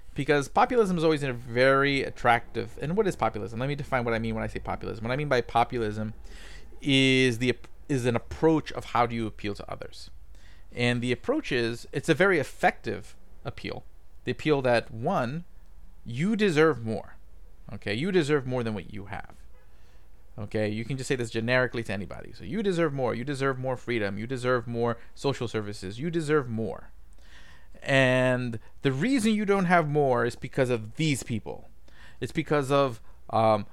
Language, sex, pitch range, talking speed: English, male, 105-145 Hz, 185 wpm